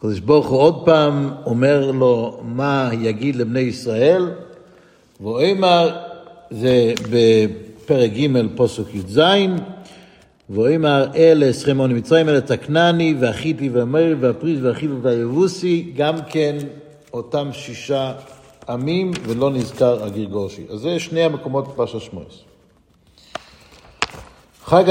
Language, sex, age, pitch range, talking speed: Hebrew, male, 60-79, 125-165 Hz, 105 wpm